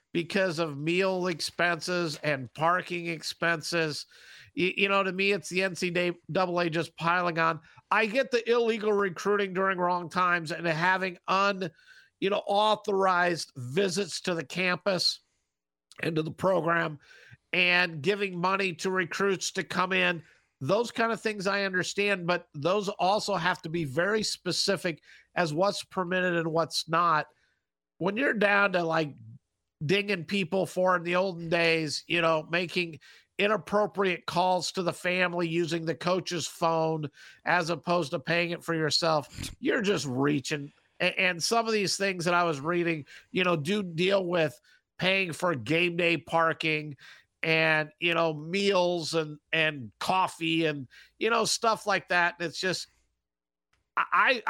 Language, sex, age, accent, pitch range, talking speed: English, male, 50-69, American, 165-190 Hz, 150 wpm